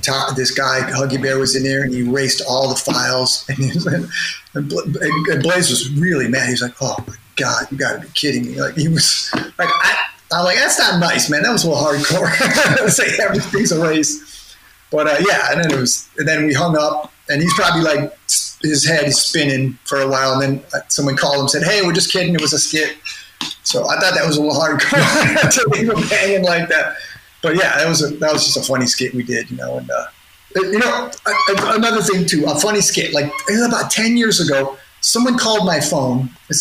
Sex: male